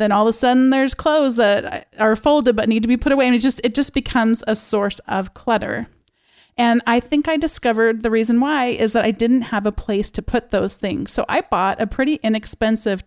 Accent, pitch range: American, 195-240 Hz